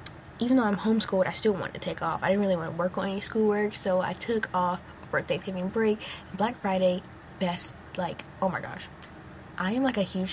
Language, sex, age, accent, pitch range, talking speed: English, female, 10-29, American, 185-210 Hz, 220 wpm